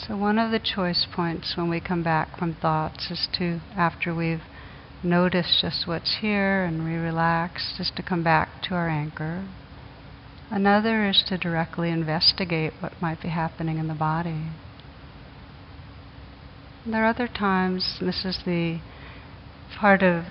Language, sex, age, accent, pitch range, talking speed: English, female, 60-79, American, 165-195 Hz, 155 wpm